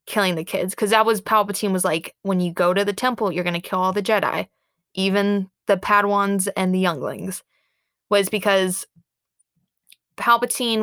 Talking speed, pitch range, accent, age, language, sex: 170 wpm, 180-205 Hz, American, 20-39, English, female